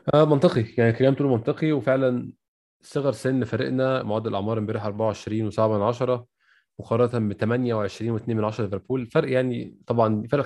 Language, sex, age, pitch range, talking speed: Arabic, male, 20-39, 105-130 Hz, 140 wpm